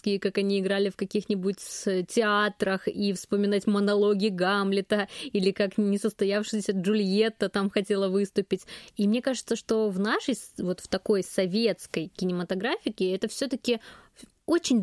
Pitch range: 190-235 Hz